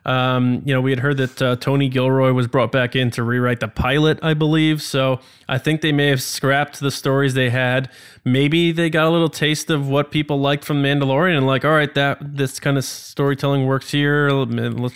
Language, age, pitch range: English, 20-39, 125-155 Hz